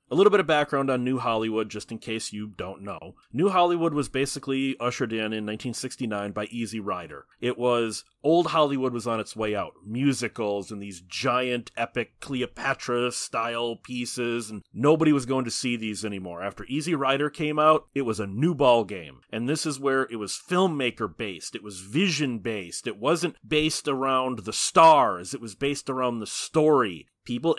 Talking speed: 180 wpm